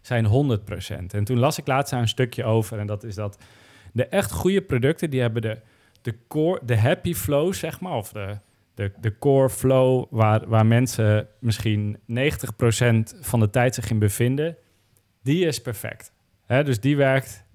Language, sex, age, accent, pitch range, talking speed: Dutch, male, 40-59, Dutch, 105-130 Hz, 180 wpm